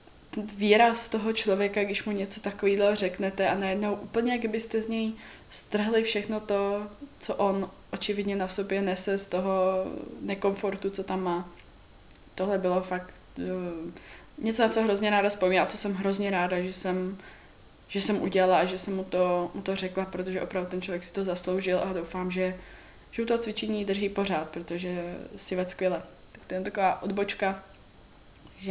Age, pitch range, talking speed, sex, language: 20-39, 180-200 Hz, 175 wpm, female, Czech